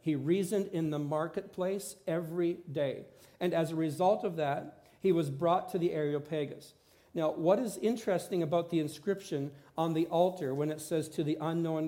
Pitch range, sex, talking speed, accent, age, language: 155-195 Hz, male, 175 wpm, American, 50-69, English